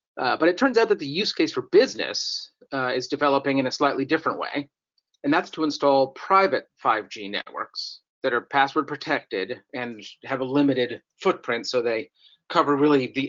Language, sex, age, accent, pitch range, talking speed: English, male, 40-59, American, 120-150 Hz, 180 wpm